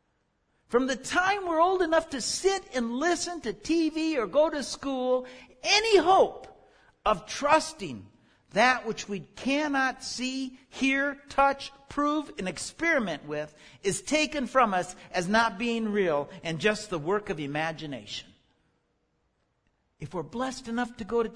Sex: male